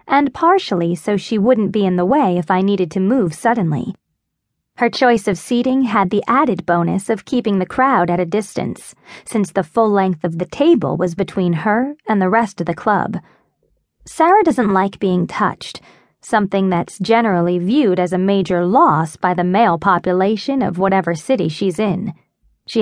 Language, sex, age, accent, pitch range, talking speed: English, female, 20-39, American, 185-235 Hz, 180 wpm